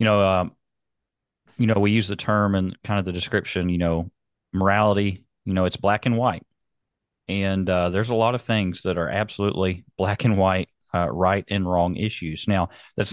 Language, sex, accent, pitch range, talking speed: English, male, American, 95-115 Hz, 195 wpm